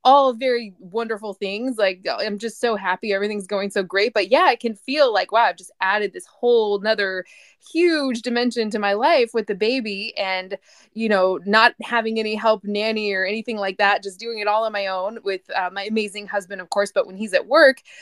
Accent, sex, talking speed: American, female, 215 wpm